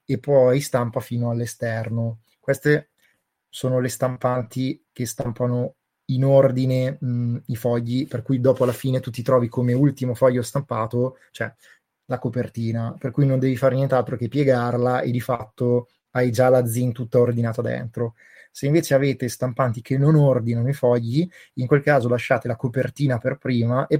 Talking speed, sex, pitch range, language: 165 wpm, male, 120-135 Hz, Italian